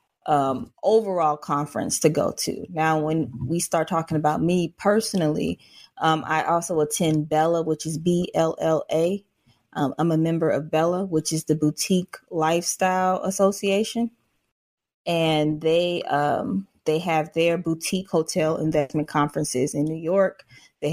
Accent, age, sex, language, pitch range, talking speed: American, 20-39, female, English, 155-185 Hz, 130 wpm